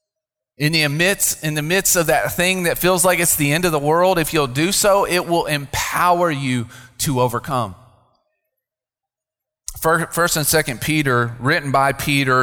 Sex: male